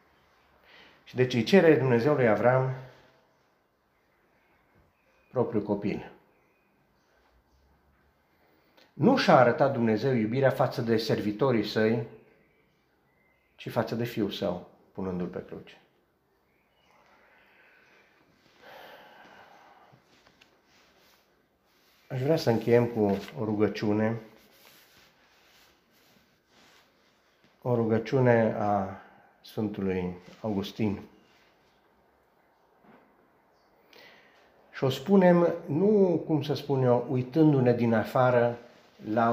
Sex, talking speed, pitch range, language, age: male, 75 wpm, 105-130 Hz, Romanian, 50-69